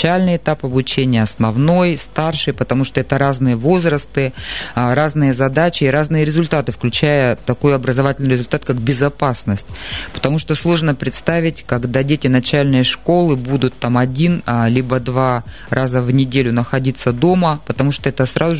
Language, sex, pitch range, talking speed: Russian, female, 125-155 Hz, 140 wpm